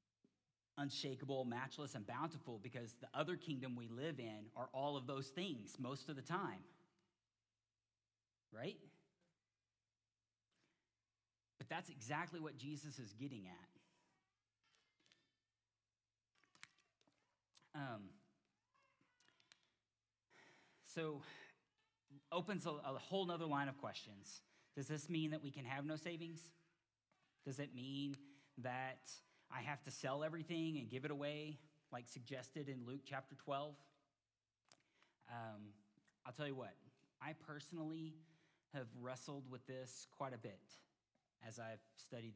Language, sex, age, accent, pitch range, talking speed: English, male, 40-59, American, 115-150 Hz, 120 wpm